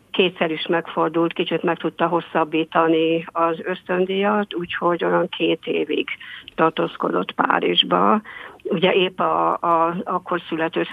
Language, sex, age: Hungarian, female, 50-69